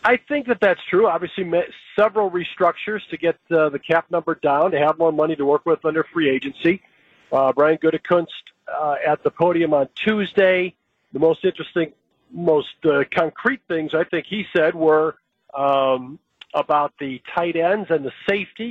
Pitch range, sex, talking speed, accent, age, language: 150-180 Hz, male, 175 wpm, American, 50-69, English